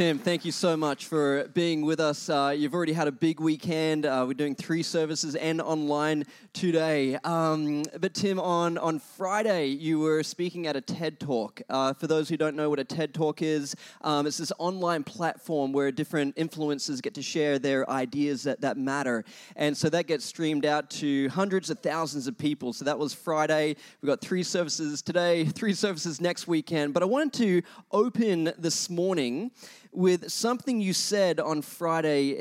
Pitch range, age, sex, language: 145-185 Hz, 20-39, male, English